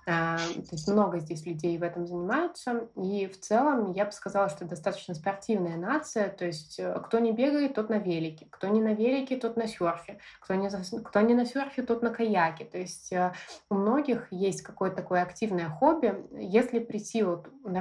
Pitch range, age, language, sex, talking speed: 180-225 Hz, 20-39, Russian, female, 185 wpm